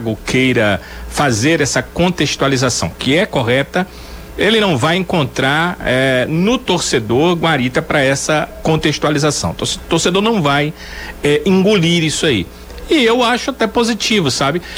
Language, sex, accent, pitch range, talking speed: Portuguese, male, Brazilian, 135-180 Hz, 125 wpm